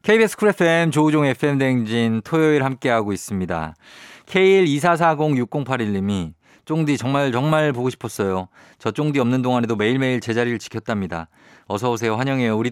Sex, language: male, Korean